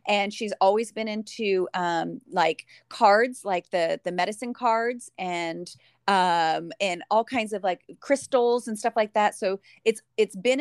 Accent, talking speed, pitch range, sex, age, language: American, 165 wpm, 185-220 Hz, female, 30-49, English